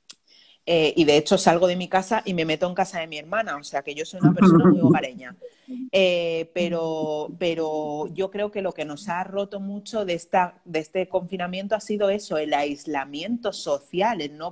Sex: female